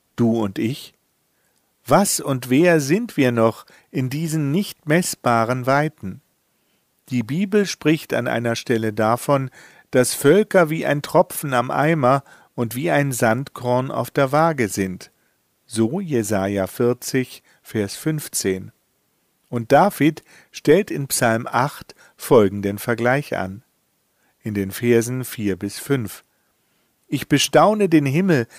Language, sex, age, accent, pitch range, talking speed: German, male, 50-69, German, 115-155 Hz, 125 wpm